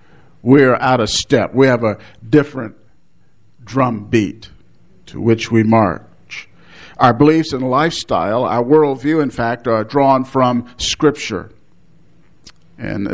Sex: male